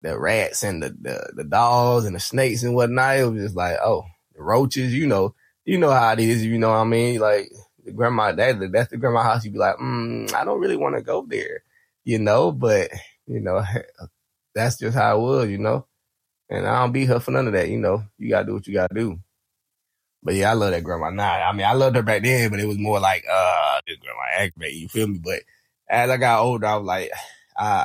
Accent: American